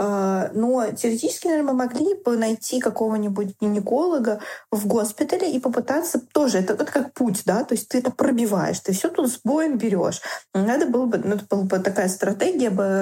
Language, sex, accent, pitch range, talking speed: Russian, female, native, 200-250 Hz, 185 wpm